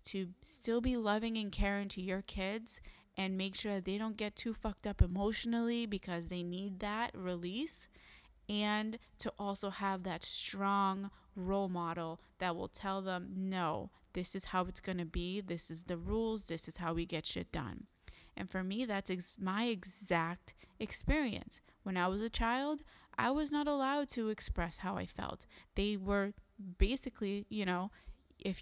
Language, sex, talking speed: English, female, 170 wpm